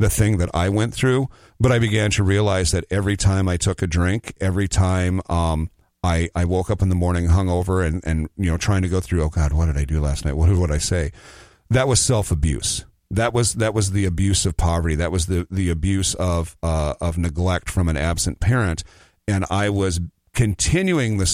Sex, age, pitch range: male, 40-59, 85-105 Hz